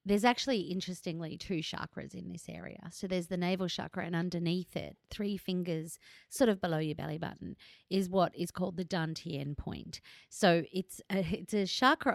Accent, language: Australian, English